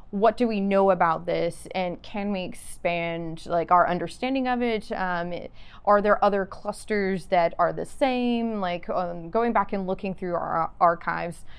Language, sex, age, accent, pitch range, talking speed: English, female, 20-39, American, 170-205 Hz, 175 wpm